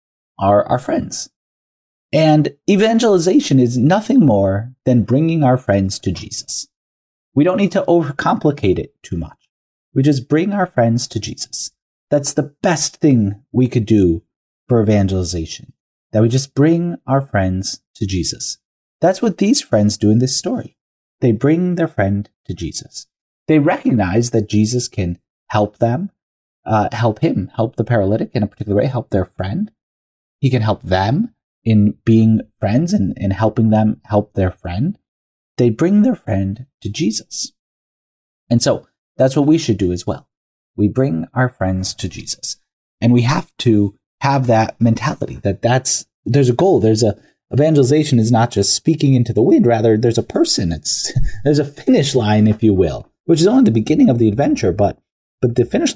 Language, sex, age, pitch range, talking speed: English, male, 30-49, 105-145 Hz, 175 wpm